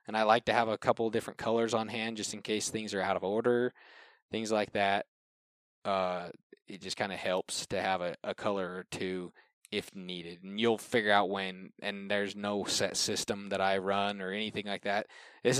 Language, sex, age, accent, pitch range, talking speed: English, male, 20-39, American, 95-115 Hz, 215 wpm